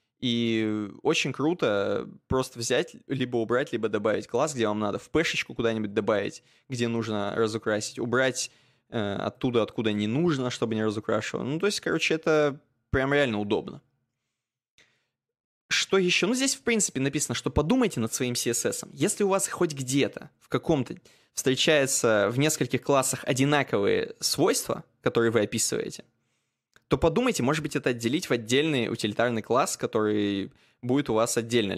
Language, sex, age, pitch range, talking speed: Russian, male, 20-39, 115-155 Hz, 150 wpm